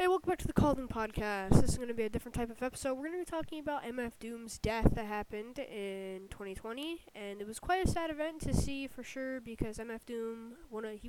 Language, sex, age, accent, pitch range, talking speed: English, female, 10-29, American, 215-270 Hz, 255 wpm